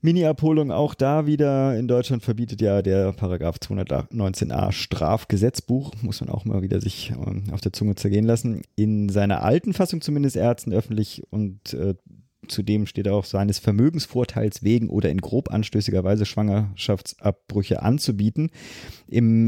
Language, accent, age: German, German, 30-49